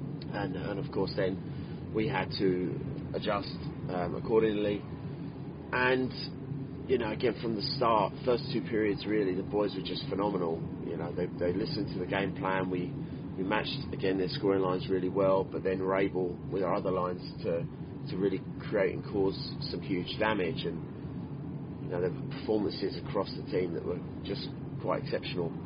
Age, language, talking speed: 30-49, English, 180 wpm